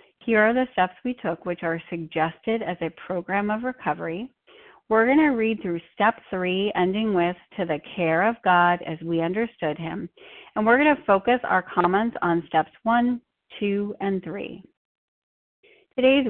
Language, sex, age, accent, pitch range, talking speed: English, female, 30-49, American, 170-230 Hz, 170 wpm